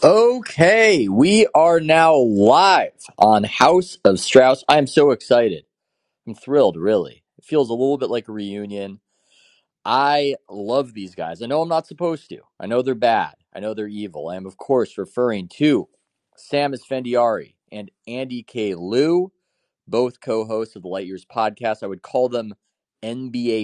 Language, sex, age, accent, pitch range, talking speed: English, male, 30-49, American, 100-155 Hz, 170 wpm